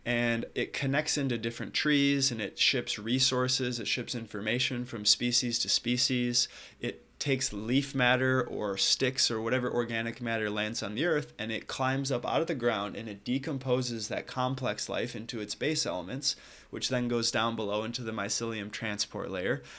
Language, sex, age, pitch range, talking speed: English, male, 20-39, 110-130 Hz, 180 wpm